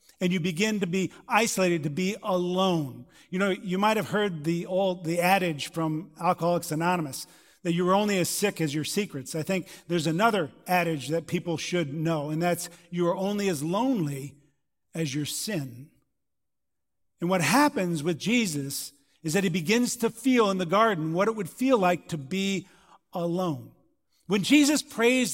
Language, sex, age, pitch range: English, male, 50-69, 160-205 Hz